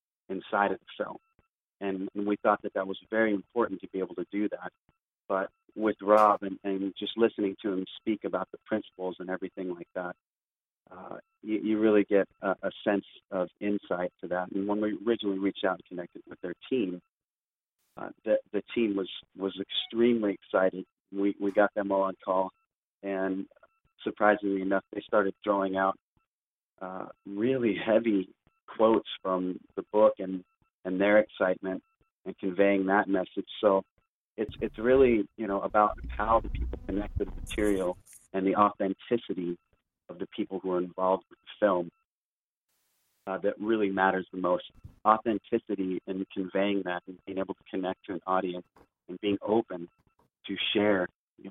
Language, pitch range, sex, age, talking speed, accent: English, 95-105 Hz, male, 30-49, 170 wpm, American